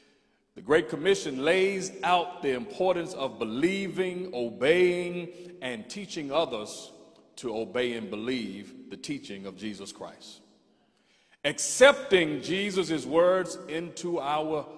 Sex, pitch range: male, 125-175 Hz